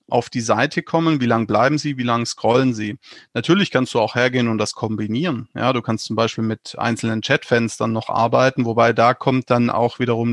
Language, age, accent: German, 30-49, German